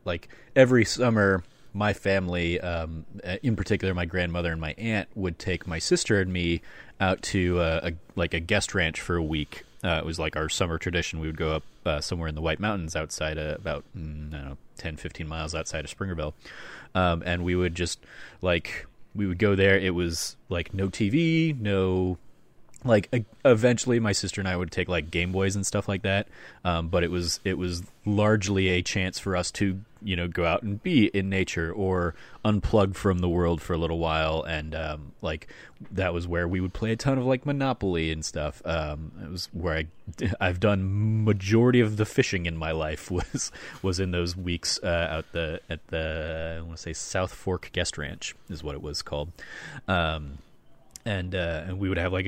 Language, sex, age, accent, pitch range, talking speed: English, male, 30-49, American, 80-105 Hz, 210 wpm